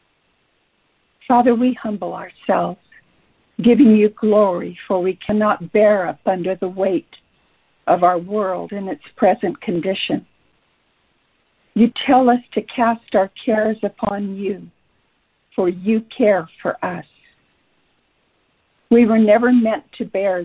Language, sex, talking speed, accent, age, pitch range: English, female, 125 wpm, American, 60-79, 190-230 Hz